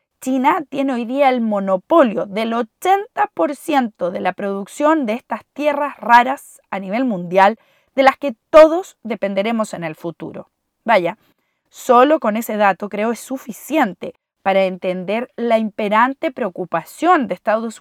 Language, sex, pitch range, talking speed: Spanish, female, 195-270 Hz, 140 wpm